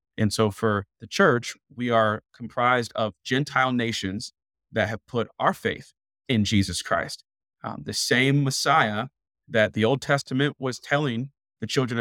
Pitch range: 110-135 Hz